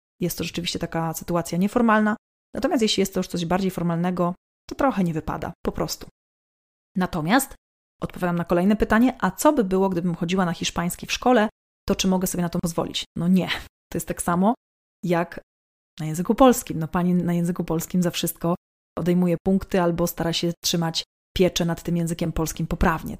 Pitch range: 165-195 Hz